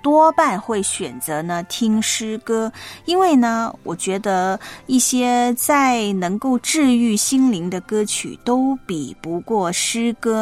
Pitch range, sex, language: 195-270 Hz, female, Chinese